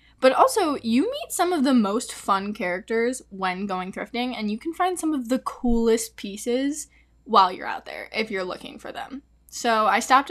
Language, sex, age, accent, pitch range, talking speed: English, female, 10-29, American, 200-265 Hz, 200 wpm